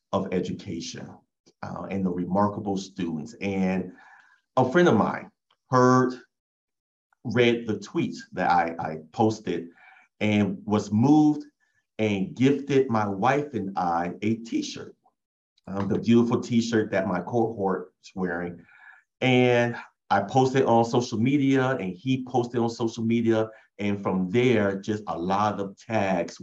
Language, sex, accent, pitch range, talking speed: English, male, American, 95-125 Hz, 135 wpm